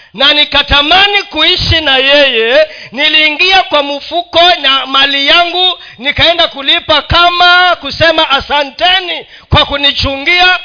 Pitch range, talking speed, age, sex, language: 270-355 Hz, 100 wpm, 40-59, male, Swahili